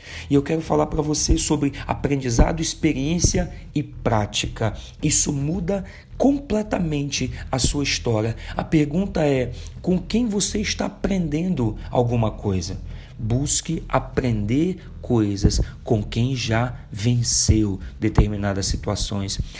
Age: 40-59